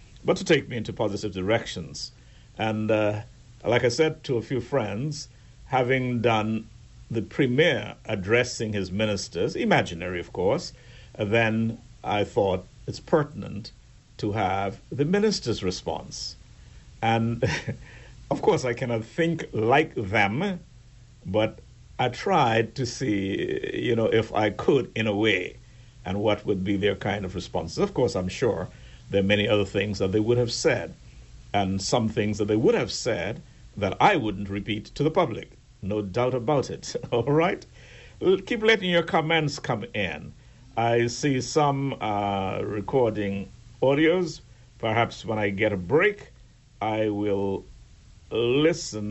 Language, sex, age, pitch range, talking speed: English, male, 60-79, 105-125 Hz, 150 wpm